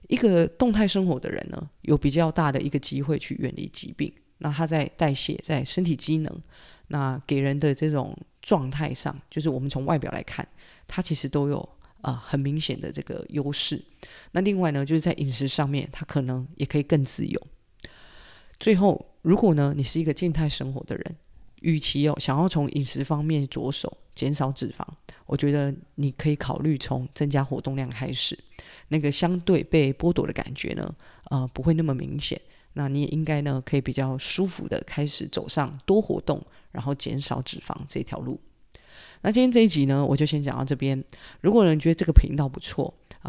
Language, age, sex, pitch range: Chinese, 20-39, female, 140-165 Hz